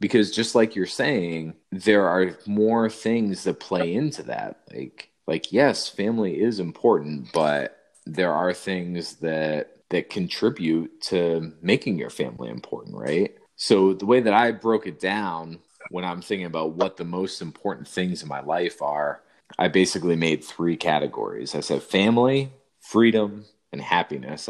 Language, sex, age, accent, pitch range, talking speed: English, male, 30-49, American, 80-105 Hz, 155 wpm